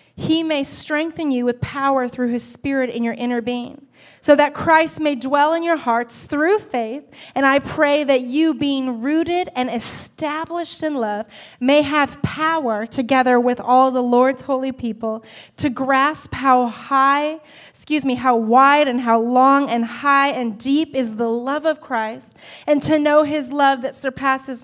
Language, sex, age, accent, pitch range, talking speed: English, female, 30-49, American, 245-295 Hz, 175 wpm